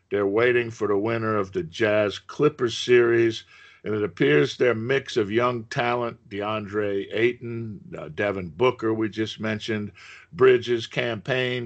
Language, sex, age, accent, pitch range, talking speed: English, male, 50-69, American, 105-125 Hz, 145 wpm